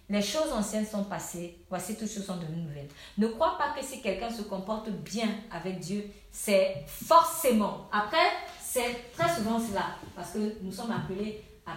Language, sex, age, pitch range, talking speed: French, female, 40-59, 185-230 Hz, 180 wpm